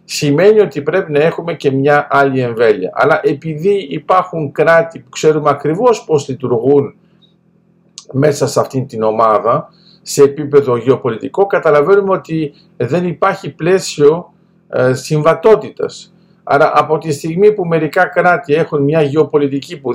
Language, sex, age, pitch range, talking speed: Greek, male, 50-69, 140-190 Hz, 130 wpm